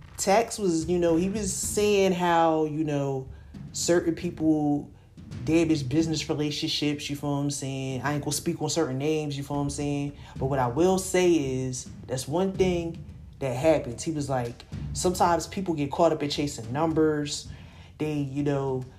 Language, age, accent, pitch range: English, 30-49, American, 140-170 Hz